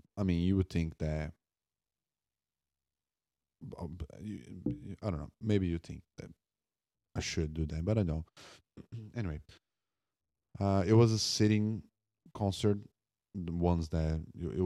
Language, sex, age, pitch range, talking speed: English, male, 30-49, 80-95 Hz, 135 wpm